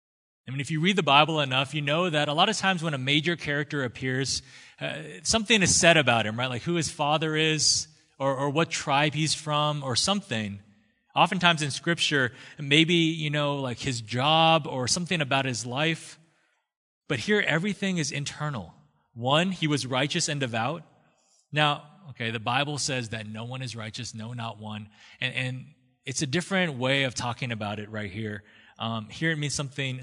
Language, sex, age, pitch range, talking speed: English, male, 30-49, 125-160 Hz, 190 wpm